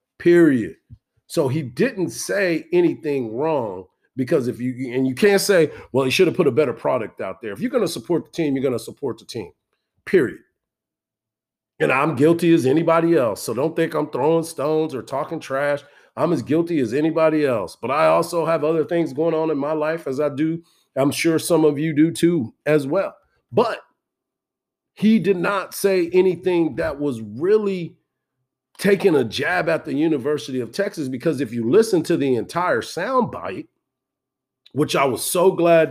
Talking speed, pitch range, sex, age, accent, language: 185 wpm, 140-175 Hz, male, 40-59, American, English